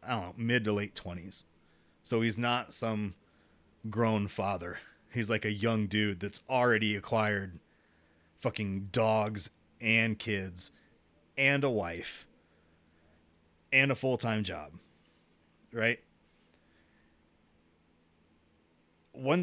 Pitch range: 80-120 Hz